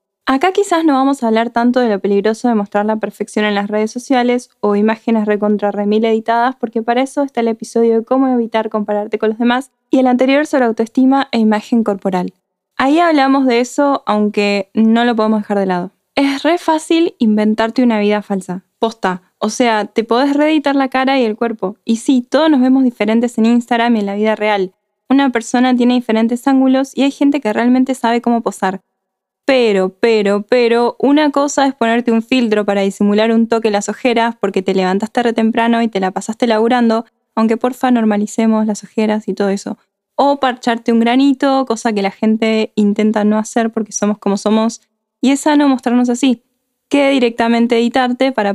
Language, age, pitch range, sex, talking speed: Spanish, 10-29, 210-255 Hz, female, 195 wpm